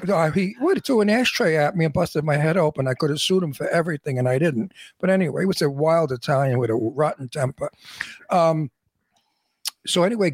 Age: 60-79